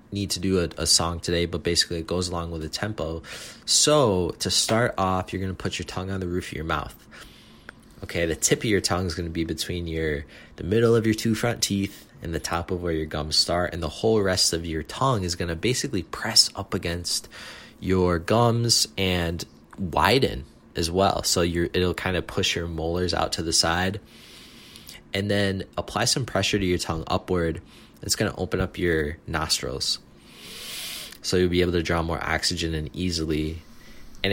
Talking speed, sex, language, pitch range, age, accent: 205 wpm, male, English, 85-95 Hz, 20-39, American